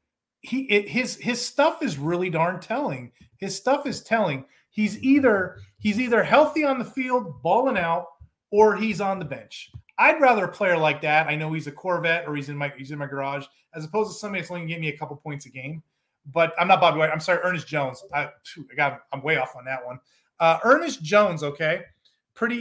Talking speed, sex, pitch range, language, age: 225 wpm, male, 155-250 Hz, English, 30-49